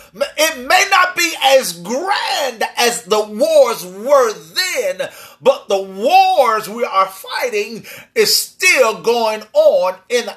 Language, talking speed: English, 125 wpm